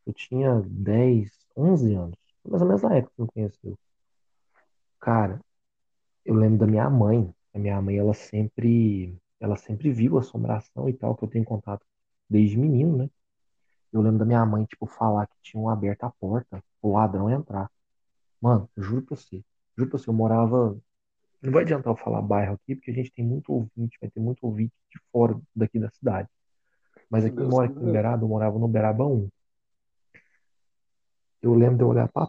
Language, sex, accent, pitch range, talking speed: Portuguese, male, Brazilian, 100-125 Hz, 190 wpm